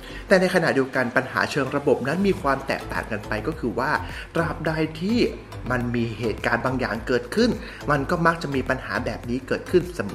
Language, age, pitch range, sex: Thai, 20-39, 110-165 Hz, male